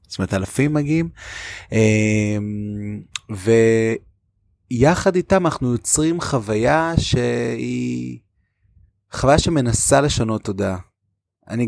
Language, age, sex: Hebrew, 20-39, male